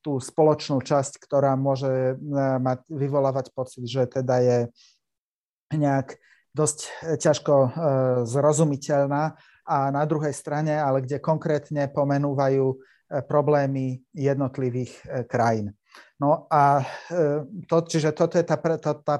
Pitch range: 135-150 Hz